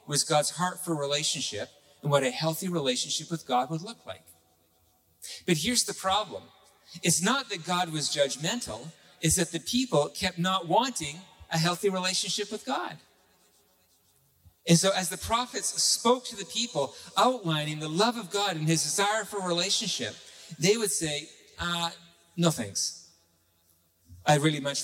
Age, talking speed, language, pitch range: 50-69, 160 wpm, English, 125-200 Hz